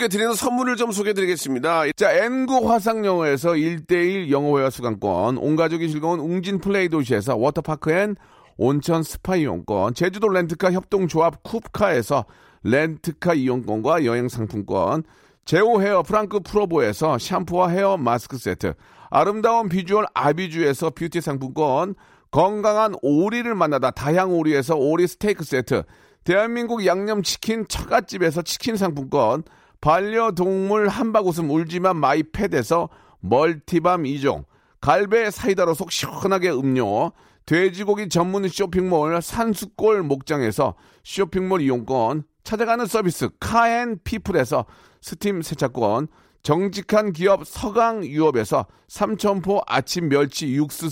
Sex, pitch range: male, 150-210 Hz